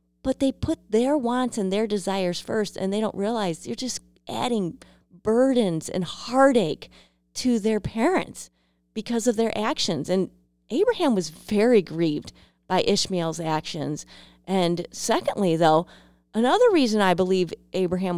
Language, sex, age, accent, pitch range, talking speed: English, female, 30-49, American, 160-230 Hz, 140 wpm